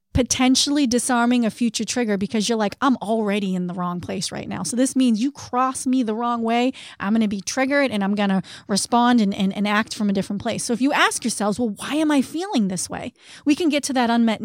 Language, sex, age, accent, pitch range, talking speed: English, female, 30-49, American, 215-260 Hz, 245 wpm